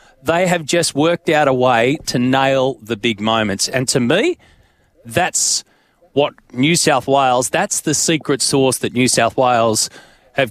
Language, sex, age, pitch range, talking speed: English, male, 30-49, 120-155 Hz, 165 wpm